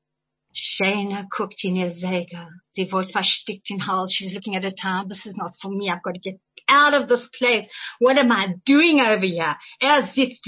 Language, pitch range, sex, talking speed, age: English, 200-275 Hz, female, 180 wpm, 50-69